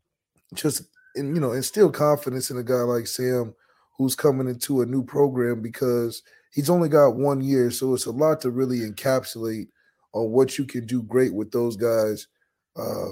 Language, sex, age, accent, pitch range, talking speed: English, male, 20-39, American, 125-145 Hz, 185 wpm